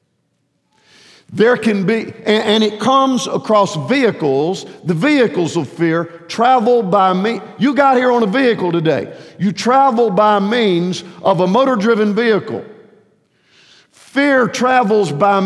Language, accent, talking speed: English, American, 135 wpm